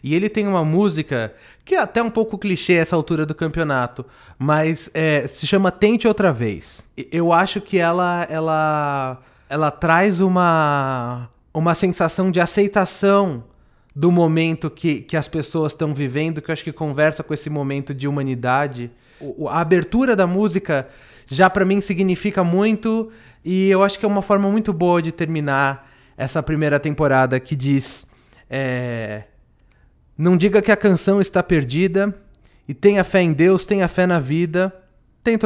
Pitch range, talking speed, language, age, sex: 135-185 Hz, 160 wpm, Portuguese, 20-39, male